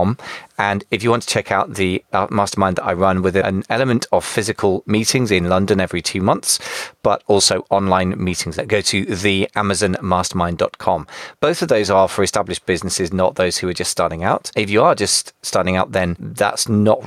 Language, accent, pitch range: English, British, 90-105 Hz